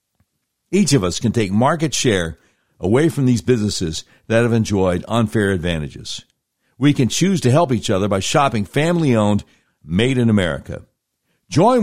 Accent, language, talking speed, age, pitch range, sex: American, English, 150 wpm, 60-79, 105-145 Hz, male